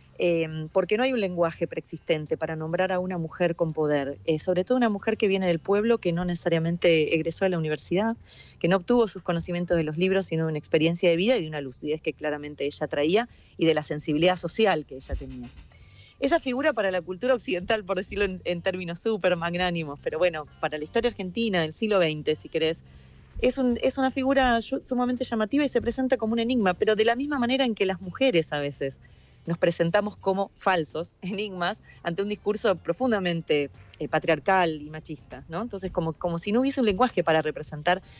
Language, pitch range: Spanish, 155-205 Hz